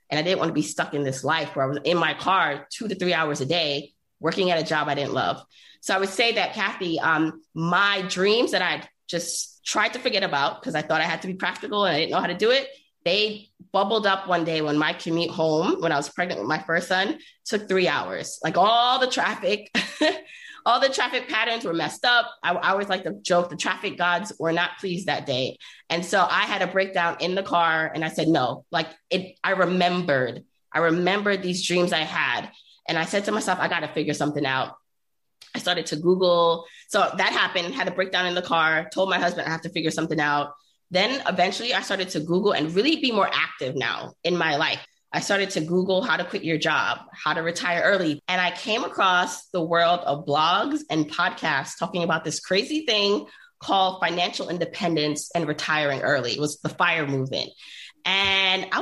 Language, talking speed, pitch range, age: English, 220 wpm, 160-200 Hz, 20-39